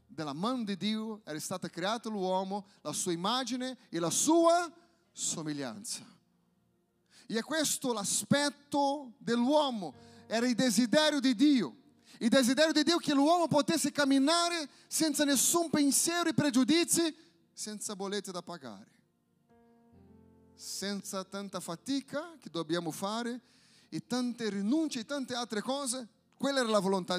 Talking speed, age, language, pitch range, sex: 130 wpm, 40-59, Italian, 190-265 Hz, male